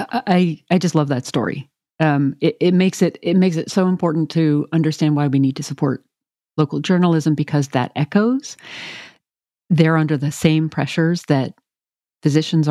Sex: female